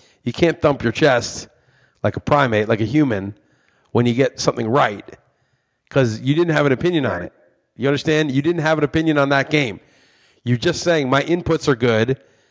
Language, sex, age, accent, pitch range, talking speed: English, male, 40-59, American, 120-155 Hz, 195 wpm